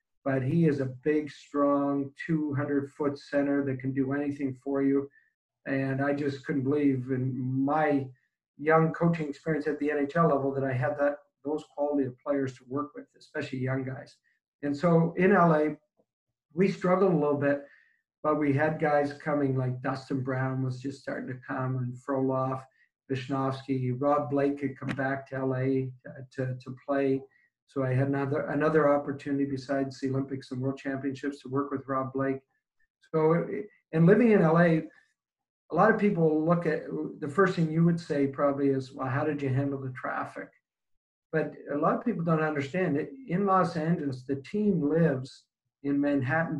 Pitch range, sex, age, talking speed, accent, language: 135-155 Hz, male, 50-69, 175 wpm, American, English